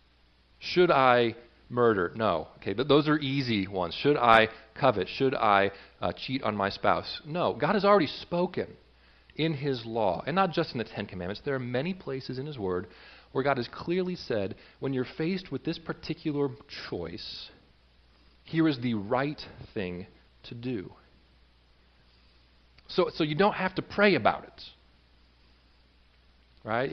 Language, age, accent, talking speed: English, 40-59, American, 160 wpm